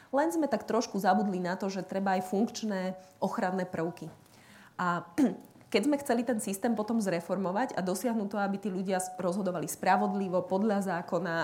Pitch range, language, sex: 185-215 Hz, Slovak, female